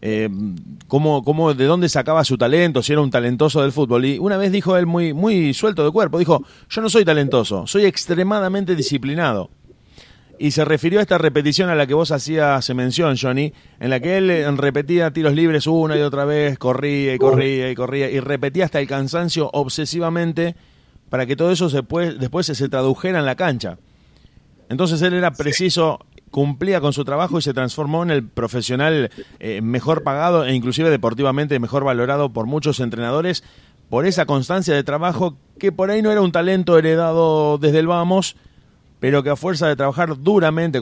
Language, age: Spanish, 30-49